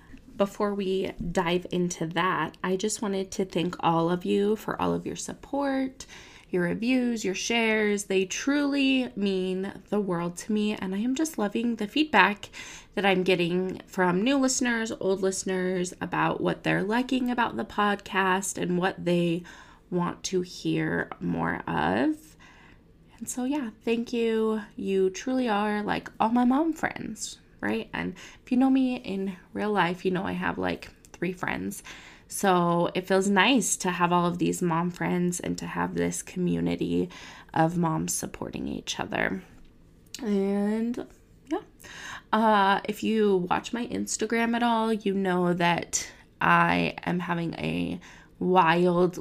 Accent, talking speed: American, 155 wpm